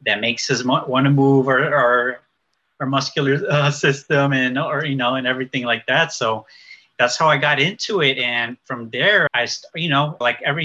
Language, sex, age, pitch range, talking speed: English, male, 30-49, 115-140 Hz, 185 wpm